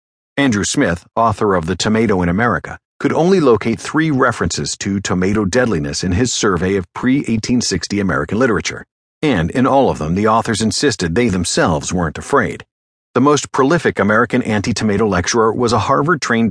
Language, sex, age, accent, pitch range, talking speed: English, male, 50-69, American, 95-120 Hz, 160 wpm